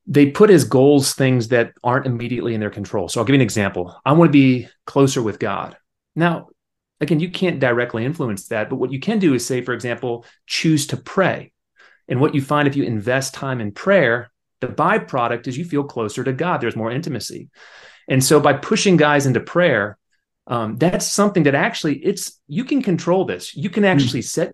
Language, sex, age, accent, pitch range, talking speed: English, male, 30-49, American, 130-170 Hz, 210 wpm